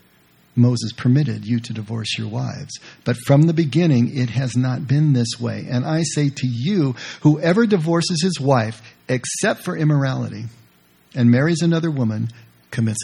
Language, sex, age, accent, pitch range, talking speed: English, male, 50-69, American, 115-170 Hz, 155 wpm